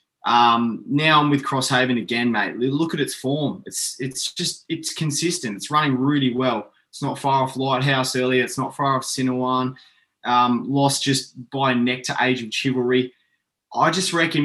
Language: English